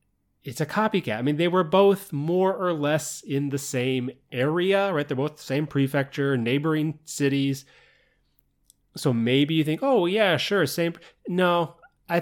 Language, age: English, 30-49